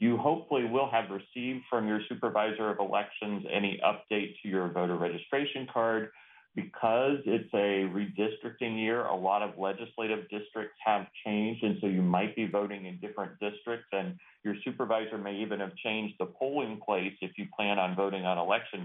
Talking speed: 175 wpm